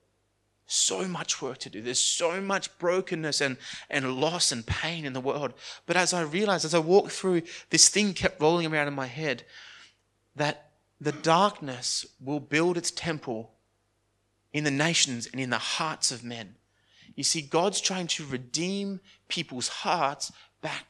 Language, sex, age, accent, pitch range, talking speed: English, male, 30-49, Australian, 130-170 Hz, 165 wpm